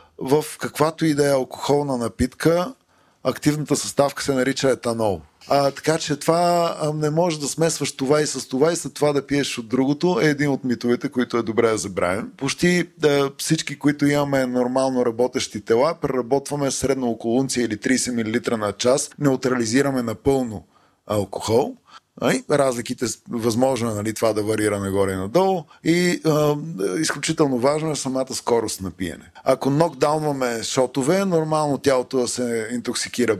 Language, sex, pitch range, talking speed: Bulgarian, male, 115-150 Hz, 155 wpm